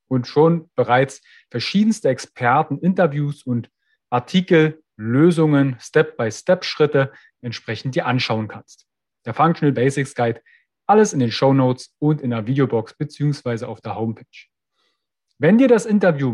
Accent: German